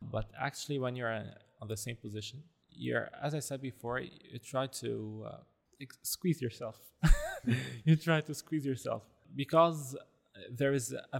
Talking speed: 160 wpm